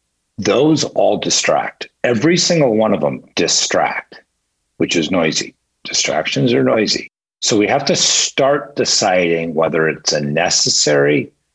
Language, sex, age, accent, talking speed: English, male, 50-69, American, 130 wpm